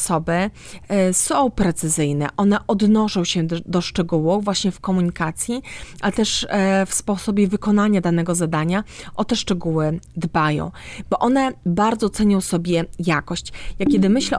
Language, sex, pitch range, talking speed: Polish, female, 175-210 Hz, 140 wpm